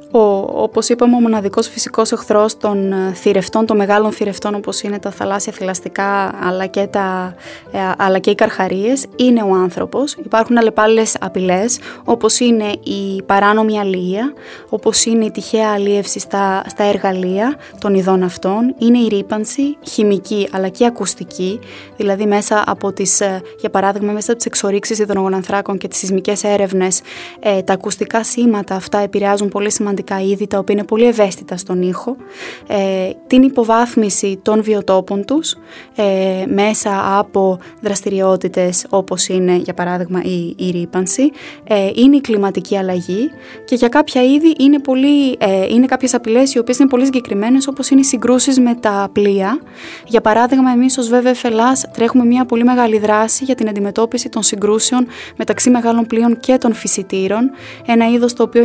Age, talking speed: 20-39, 155 wpm